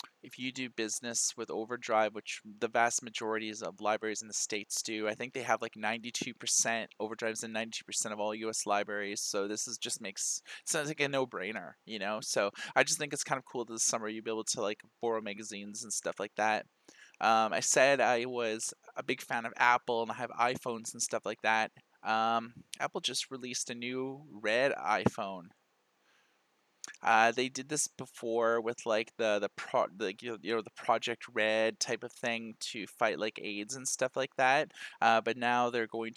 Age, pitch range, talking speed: 20-39, 110-120 Hz, 205 wpm